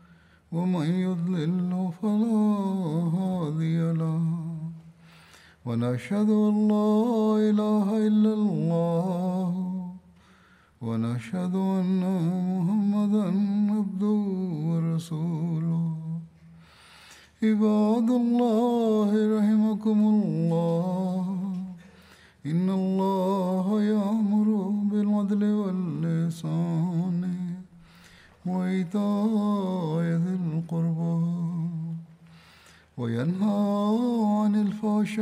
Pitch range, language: 165-205 Hz, Malayalam